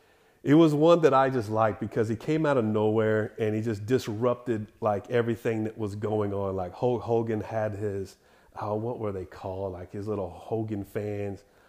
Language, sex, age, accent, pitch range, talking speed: English, male, 30-49, American, 110-130 Hz, 190 wpm